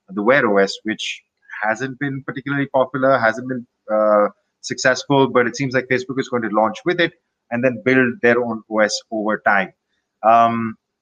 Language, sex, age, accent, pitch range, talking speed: English, male, 30-49, Indian, 115-140 Hz, 175 wpm